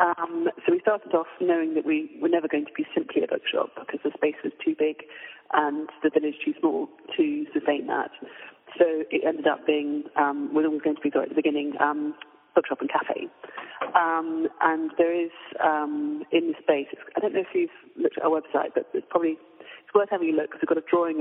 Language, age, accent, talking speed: English, 30-49, British, 225 wpm